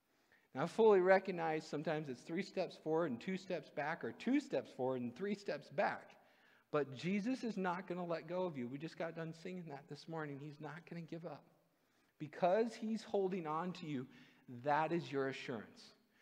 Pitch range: 120-175 Hz